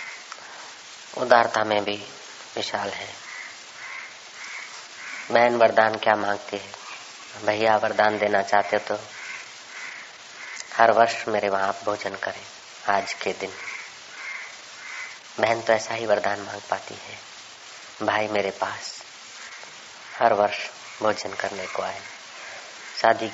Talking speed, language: 110 wpm, Hindi